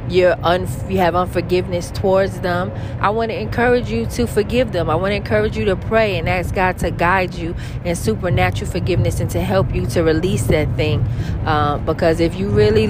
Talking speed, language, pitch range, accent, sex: 205 wpm, English, 115-175 Hz, American, female